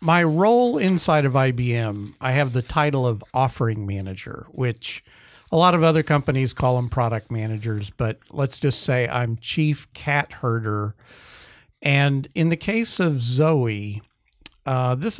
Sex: male